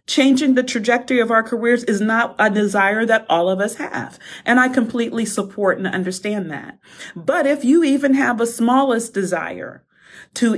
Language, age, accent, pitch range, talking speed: English, 40-59, American, 195-255 Hz, 175 wpm